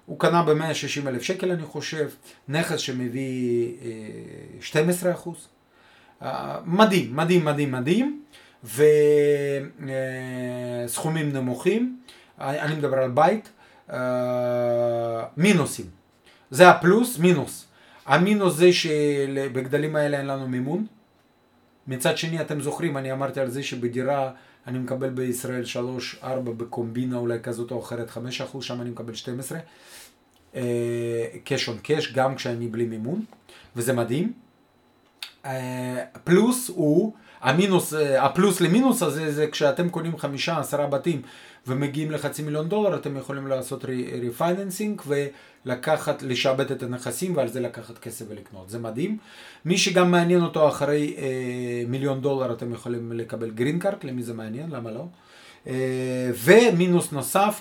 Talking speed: 125 wpm